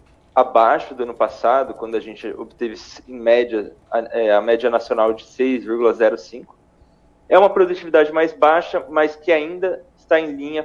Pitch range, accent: 120-155 Hz, Brazilian